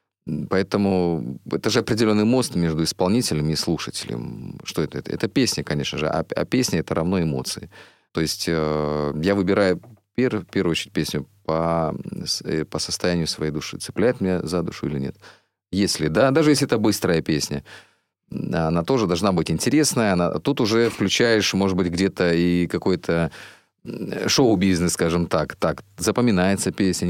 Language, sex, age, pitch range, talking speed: Russian, male, 30-49, 80-105 Hz, 150 wpm